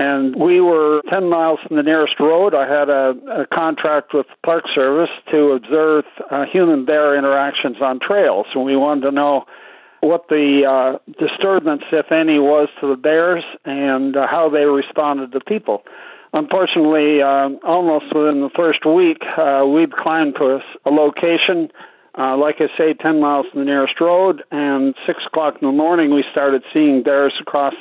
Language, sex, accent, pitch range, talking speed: English, male, American, 140-165 Hz, 175 wpm